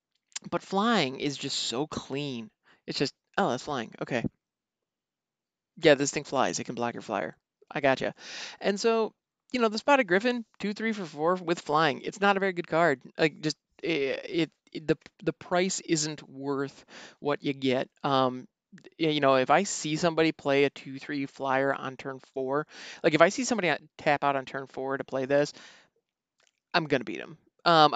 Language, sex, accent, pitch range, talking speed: English, male, American, 130-175 Hz, 185 wpm